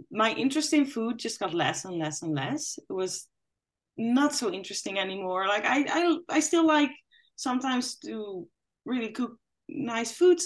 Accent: Dutch